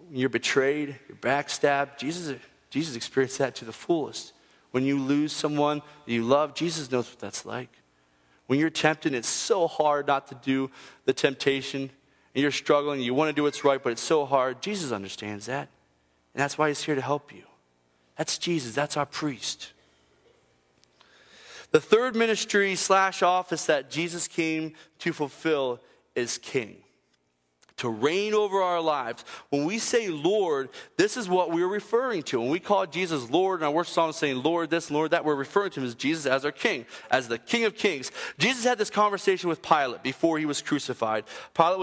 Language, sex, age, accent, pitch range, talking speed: English, male, 30-49, American, 130-180 Hz, 190 wpm